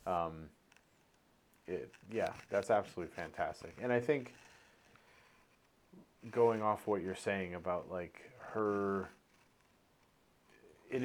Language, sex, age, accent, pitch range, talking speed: English, male, 30-49, American, 85-100 Hz, 100 wpm